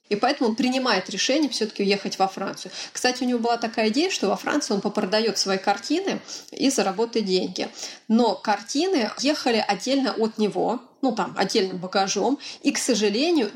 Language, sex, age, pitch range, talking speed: Russian, female, 30-49, 205-270 Hz, 170 wpm